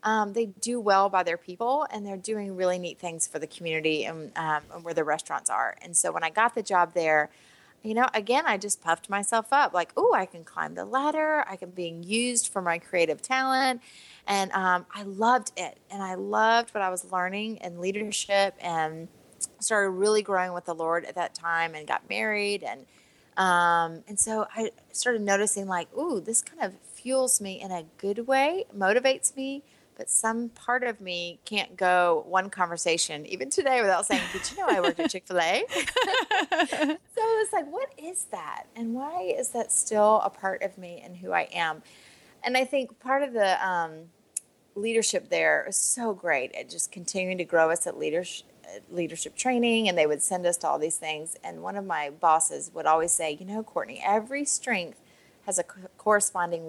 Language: English